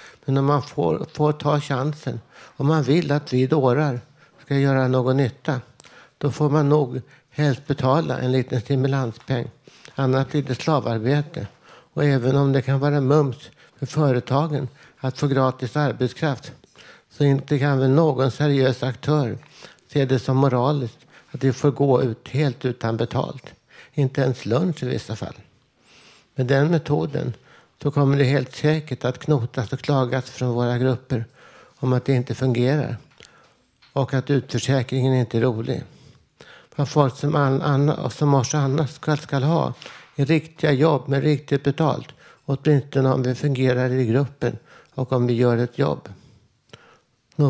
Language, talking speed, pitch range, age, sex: Swedish, 155 wpm, 125-145 Hz, 60-79, male